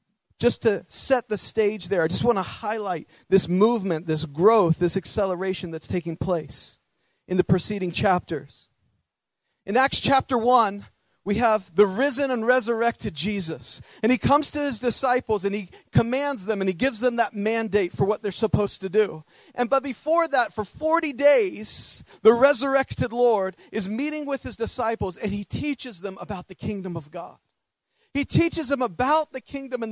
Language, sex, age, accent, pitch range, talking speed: English, male, 40-59, American, 205-280 Hz, 175 wpm